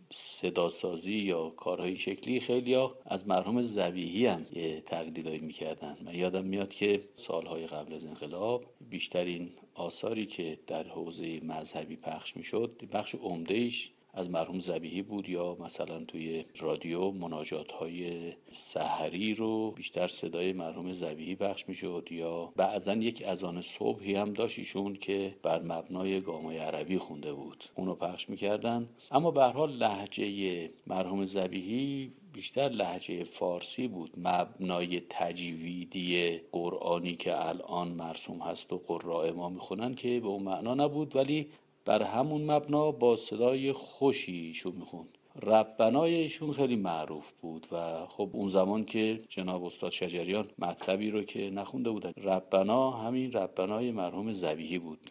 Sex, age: male, 50-69